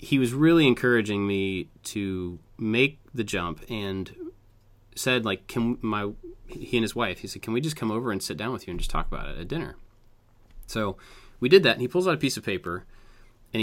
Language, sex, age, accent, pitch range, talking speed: English, male, 30-49, American, 95-120 Hz, 220 wpm